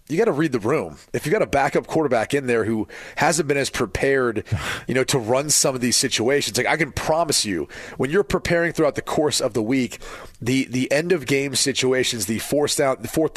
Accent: American